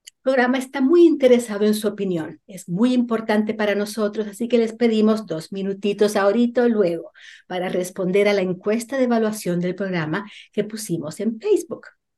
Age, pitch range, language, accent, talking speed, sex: 50-69, 185-245 Hz, Spanish, American, 170 wpm, female